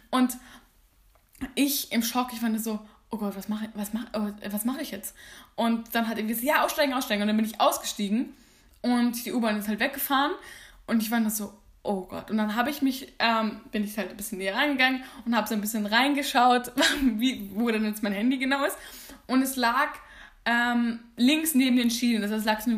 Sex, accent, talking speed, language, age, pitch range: female, German, 220 wpm, German, 10-29, 205-245 Hz